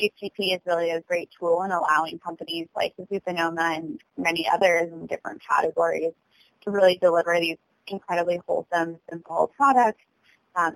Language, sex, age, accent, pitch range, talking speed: English, female, 20-39, American, 165-190 Hz, 145 wpm